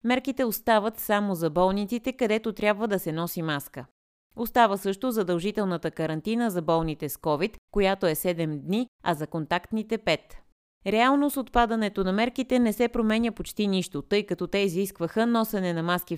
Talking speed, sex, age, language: 165 wpm, female, 20-39, Bulgarian